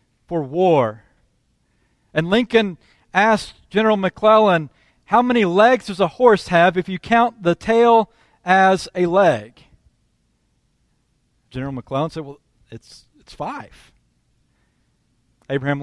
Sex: male